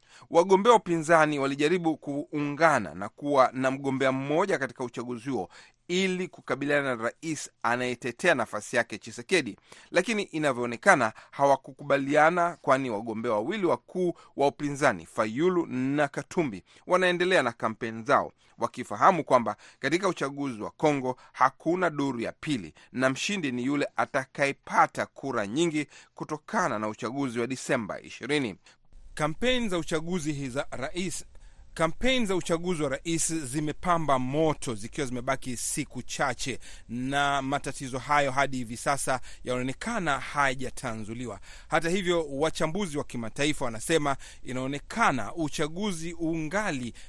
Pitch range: 125-160 Hz